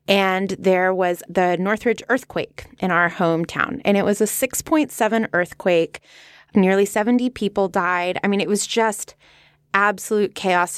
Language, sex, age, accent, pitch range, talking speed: English, female, 20-39, American, 175-220 Hz, 145 wpm